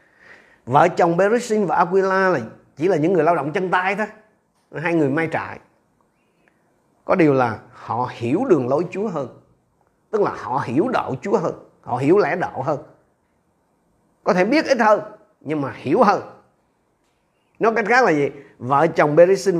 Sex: male